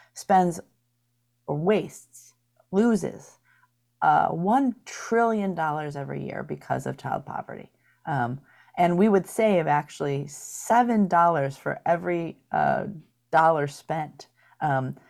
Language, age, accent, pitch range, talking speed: English, 40-59, American, 140-180 Hz, 105 wpm